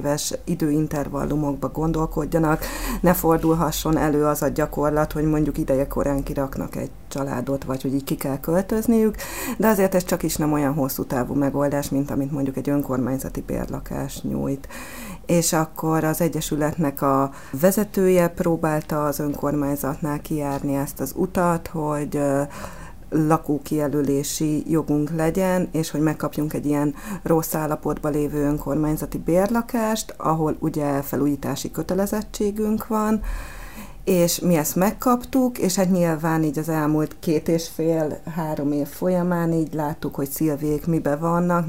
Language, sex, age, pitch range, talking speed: Hungarian, female, 30-49, 145-165 Hz, 130 wpm